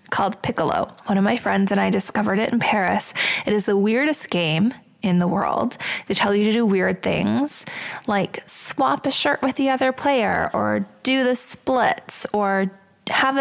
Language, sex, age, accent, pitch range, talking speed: English, female, 20-39, American, 195-250 Hz, 185 wpm